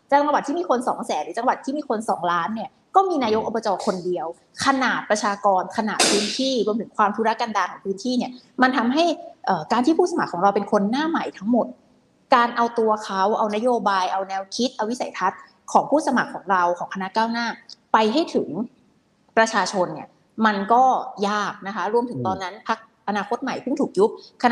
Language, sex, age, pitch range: Thai, female, 20-39, 195-260 Hz